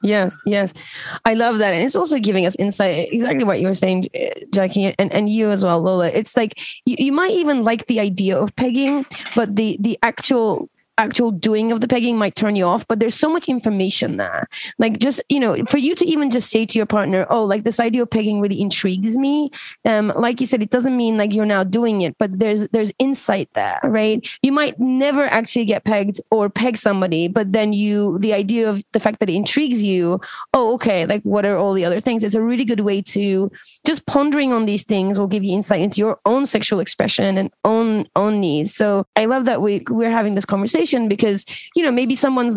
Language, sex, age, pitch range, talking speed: English, female, 20-39, 200-250 Hz, 225 wpm